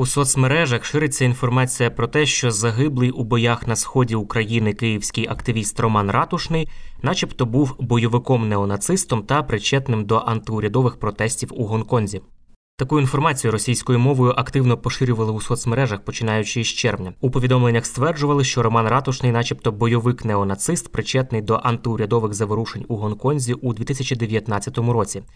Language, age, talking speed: Ukrainian, 20-39, 130 wpm